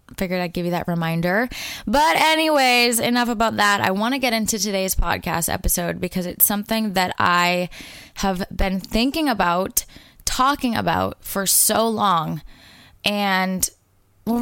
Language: English